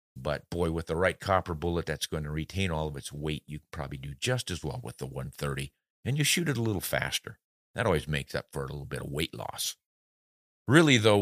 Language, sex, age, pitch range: English, male, 50-69, 75-105 Hz